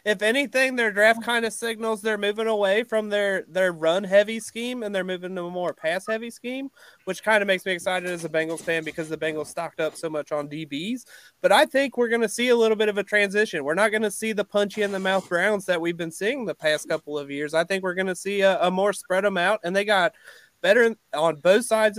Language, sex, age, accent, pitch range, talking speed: English, male, 20-39, American, 170-215 Hz, 250 wpm